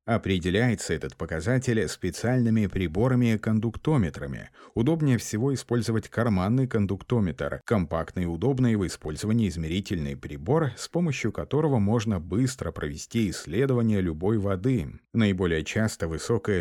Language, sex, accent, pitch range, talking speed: Russian, male, native, 90-120 Hz, 105 wpm